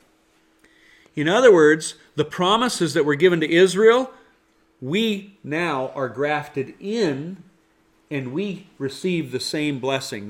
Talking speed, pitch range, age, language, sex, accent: 120 wpm, 135-185 Hz, 40-59, English, male, American